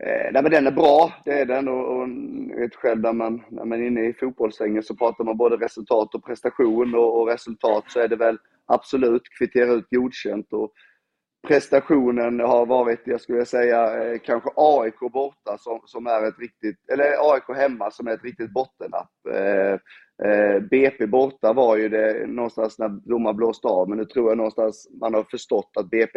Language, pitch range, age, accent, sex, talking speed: Swedish, 110-130 Hz, 30-49, native, male, 190 wpm